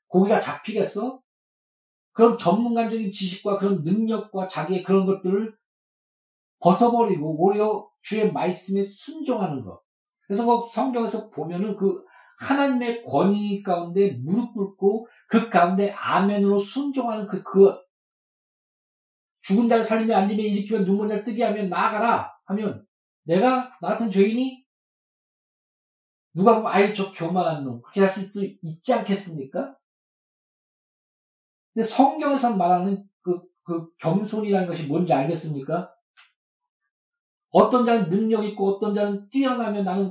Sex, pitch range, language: male, 185-225 Hz, Korean